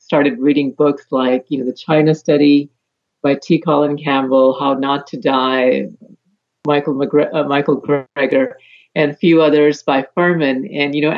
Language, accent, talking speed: English, American, 165 wpm